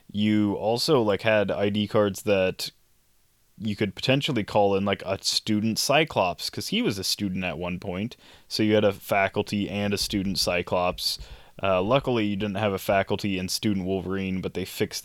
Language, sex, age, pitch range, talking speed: English, male, 20-39, 95-110 Hz, 185 wpm